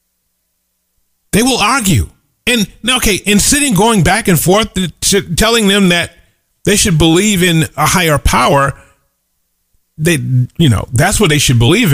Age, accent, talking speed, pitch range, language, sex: 40-59, American, 155 wpm, 135-205 Hz, English, male